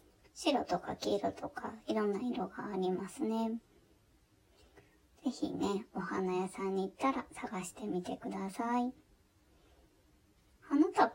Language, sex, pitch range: Japanese, male, 185-255 Hz